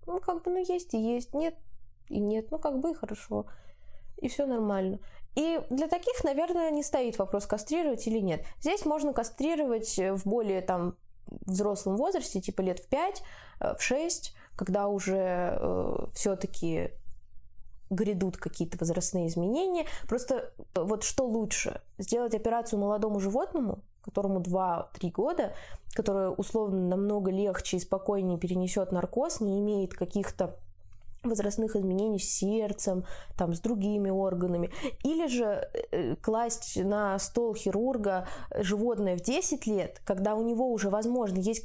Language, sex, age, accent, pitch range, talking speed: Russian, female, 20-39, native, 195-255 Hz, 140 wpm